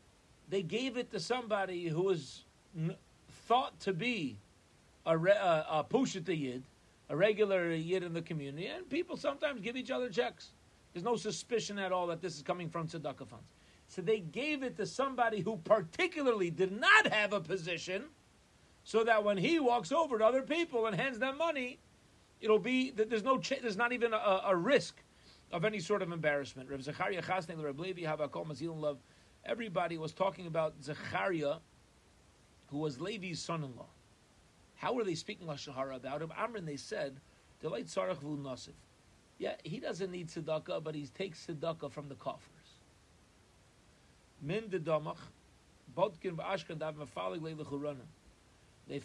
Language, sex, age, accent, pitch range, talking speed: English, male, 40-59, American, 150-210 Hz, 140 wpm